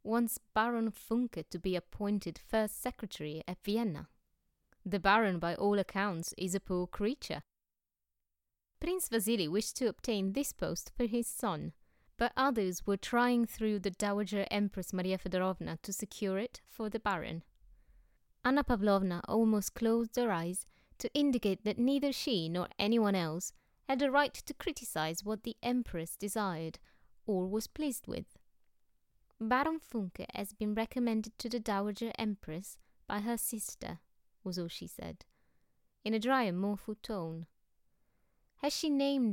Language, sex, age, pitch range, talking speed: English, female, 20-39, 190-235 Hz, 150 wpm